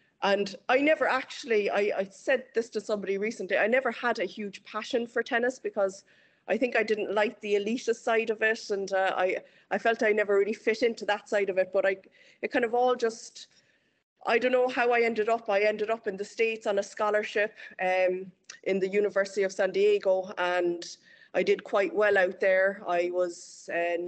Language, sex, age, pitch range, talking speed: English, female, 30-49, 175-210 Hz, 210 wpm